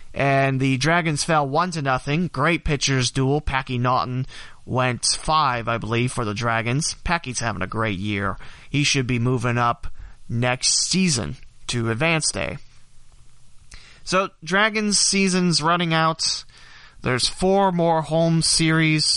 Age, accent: 30-49, American